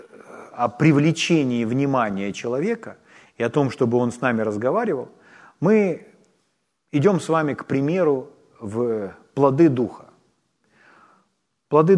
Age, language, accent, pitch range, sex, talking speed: 40-59, Ukrainian, native, 115-150 Hz, male, 110 wpm